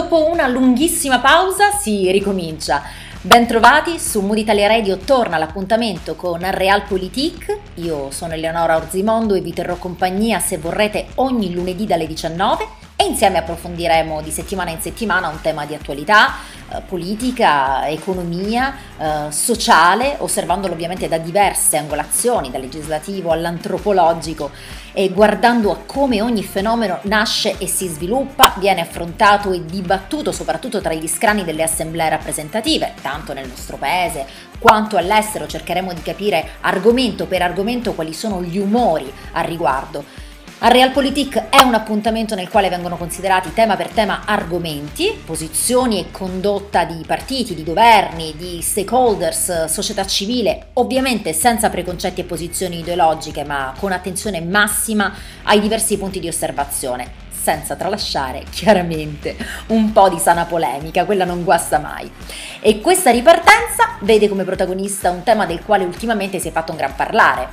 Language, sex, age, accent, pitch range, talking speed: Italian, female, 30-49, native, 170-220 Hz, 140 wpm